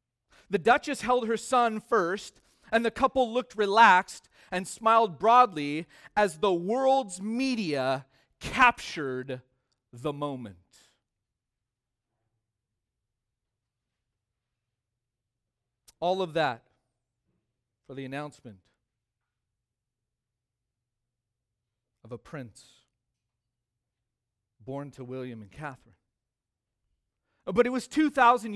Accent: American